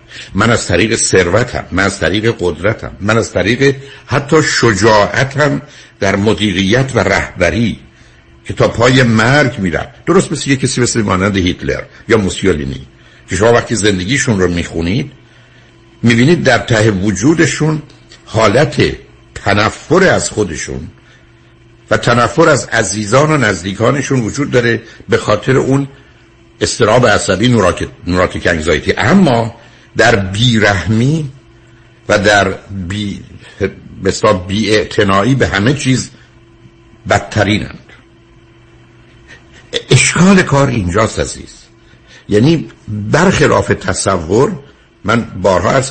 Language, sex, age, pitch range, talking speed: Persian, male, 60-79, 100-125 Hz, 110 wpm